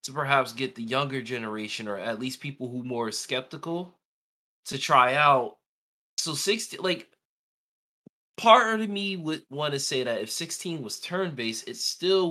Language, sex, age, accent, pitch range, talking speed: English, male, 20-39, American, 120-175 Hz, 165 wpm